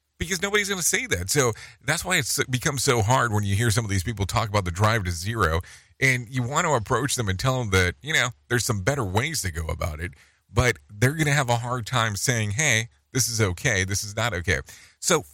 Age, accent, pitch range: 40-59, American, 80-125 Hz